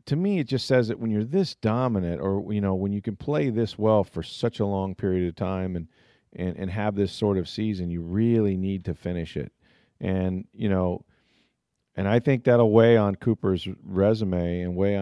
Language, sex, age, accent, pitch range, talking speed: English, male, 40-59, American, 90-110 Hz, 210 wpm